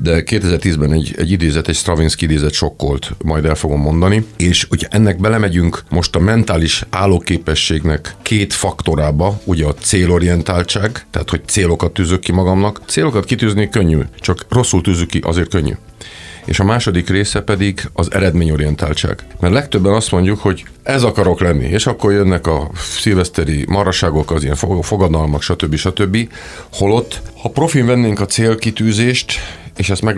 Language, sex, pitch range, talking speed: Hungarian, male, 80-100 Hz, 150 wpm